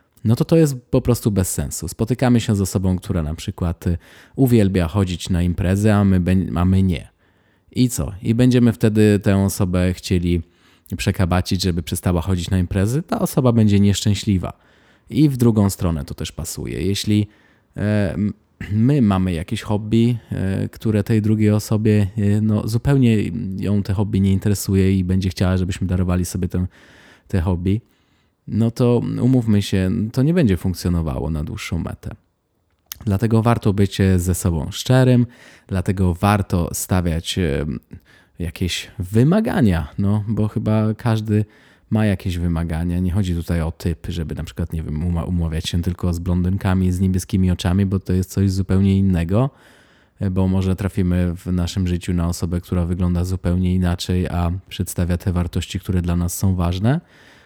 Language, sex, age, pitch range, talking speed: Polish, male, 20-39, 90-105 Hz, 160 wpm